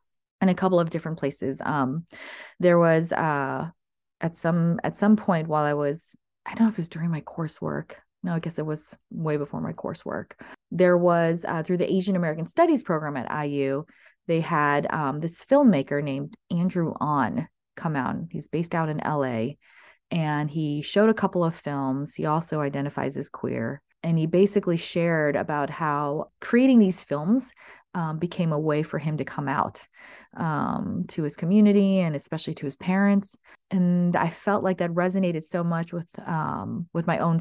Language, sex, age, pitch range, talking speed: English, female, 20-39, 155-190 Hz, 185 wpm